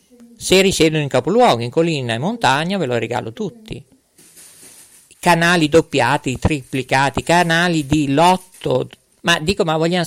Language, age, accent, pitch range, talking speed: Italian, 50-69, native, 150-235 Hz, 130 wpm